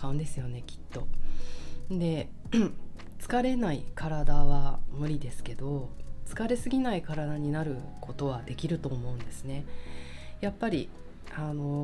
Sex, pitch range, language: female, 130-170 Hz, Japanese